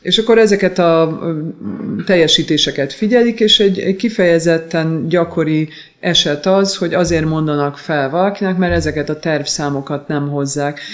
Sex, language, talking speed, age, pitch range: female, Hungarian, 125 wpm, 30-49, 150-175 Hz